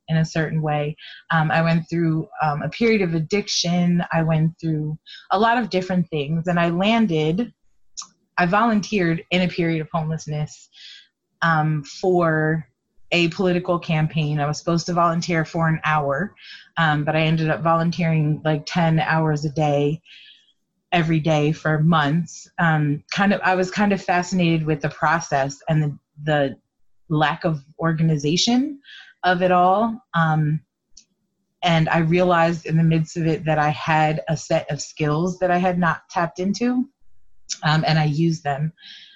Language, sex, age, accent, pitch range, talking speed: English, female, 30-49, American, 155-185 Hz, 160 wpm